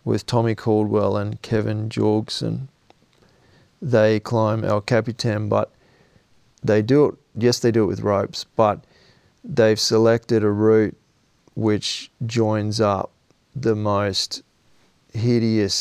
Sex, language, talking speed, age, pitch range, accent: male, English, 120 wpm, 30-49, 105-120 Hz, Australian